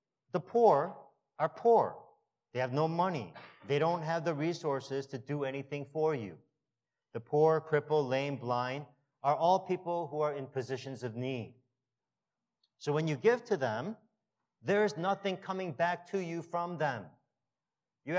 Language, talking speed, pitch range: English, 160 wpm, 125-170 Hz